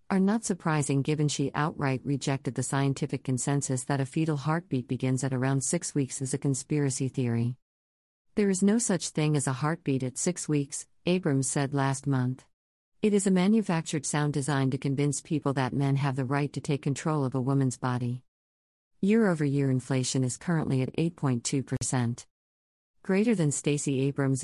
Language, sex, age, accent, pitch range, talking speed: English, female, 50-69, American, 130-150 Hz, 170 wpm